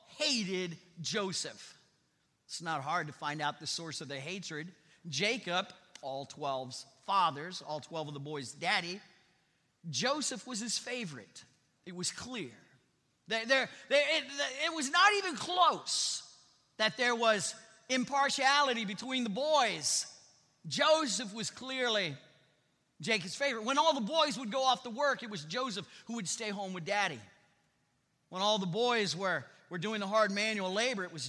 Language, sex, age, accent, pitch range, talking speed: English, male, 40-59, American, 175-265 Hz, 150 wpm